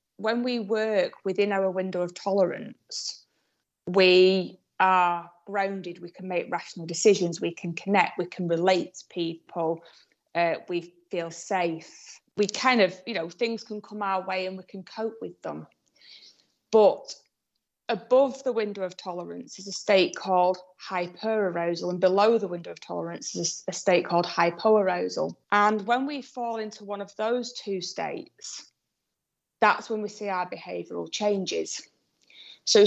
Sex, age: female, 30-49